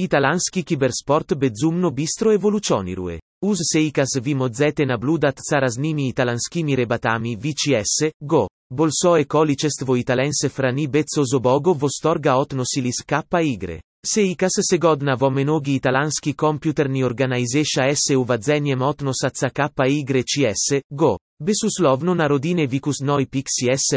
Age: 30-49